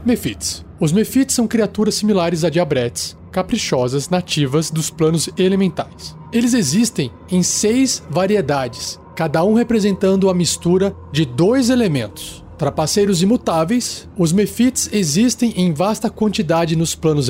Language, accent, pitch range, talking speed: Portuguese, Brazilian, 155-215 Hz, 125 wpm